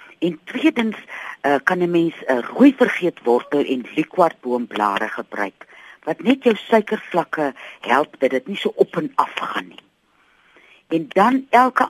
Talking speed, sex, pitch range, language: 155 wpm, female, 140-215 Hz, Dutch